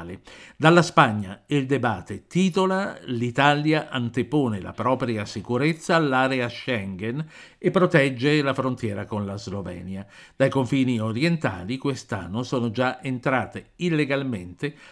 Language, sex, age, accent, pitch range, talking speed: Italian, male, 50-69, native, 110-150 Hz, 110 wpm